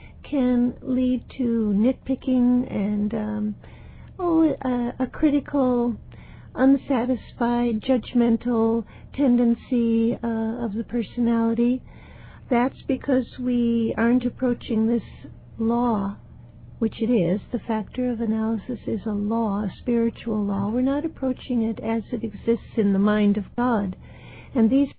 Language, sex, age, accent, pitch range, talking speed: English, female, 60-79, American, 225-260 Hz, 120 wpm